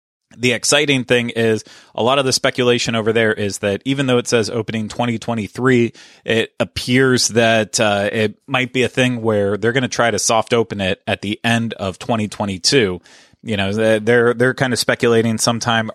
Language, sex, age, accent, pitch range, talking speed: English, male, 30-49, American, 100-120 Hz, 190 wpm